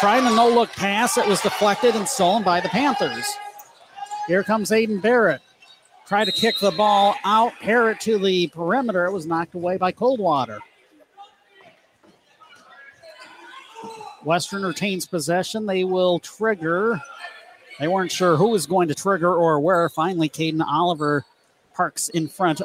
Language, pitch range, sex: English, 170-230 Hz, male